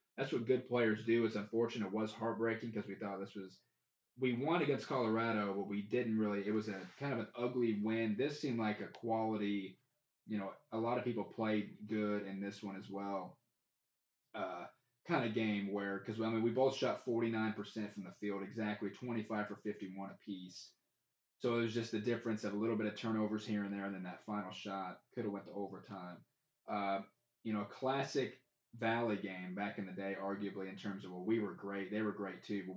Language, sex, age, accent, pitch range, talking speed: English, male, 20-39, American, 100-110 Hz, 215 wpm